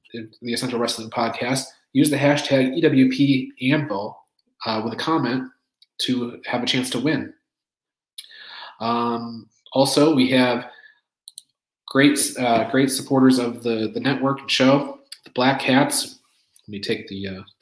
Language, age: English, 30-49